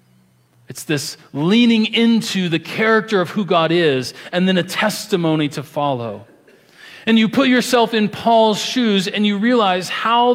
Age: 40-59